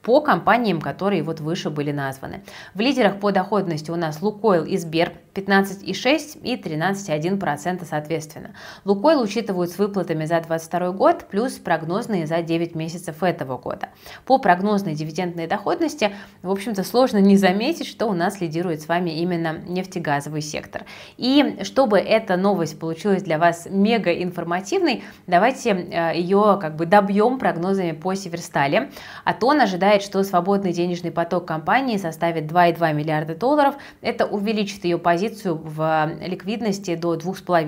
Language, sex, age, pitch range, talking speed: Russian, female, 20-39, 170-210 Hz, 145 wpm